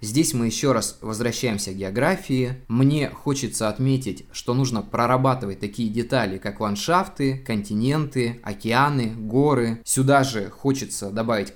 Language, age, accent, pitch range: Russian, 20-39, native, 110-135 Hz